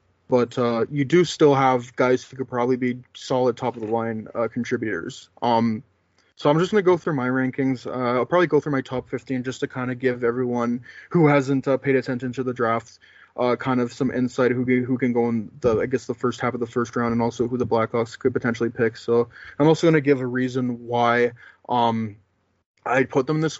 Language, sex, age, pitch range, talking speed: English, male, 20-39, 120-135 Hz, 230 wpm